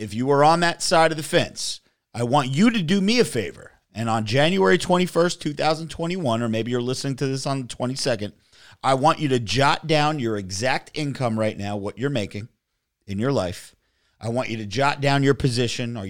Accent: American